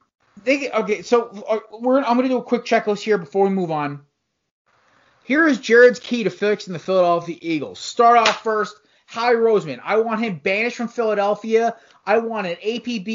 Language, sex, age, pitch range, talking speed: English, male, 30-49, 185-240 Hz, 180 wpm